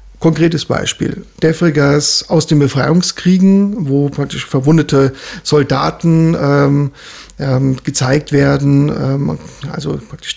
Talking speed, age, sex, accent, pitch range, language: 80 wpm, 50-69, male, German, 145-165 Hz, German